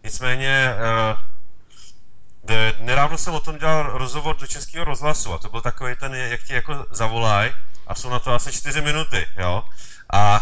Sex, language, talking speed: male, Czech, 165 wpm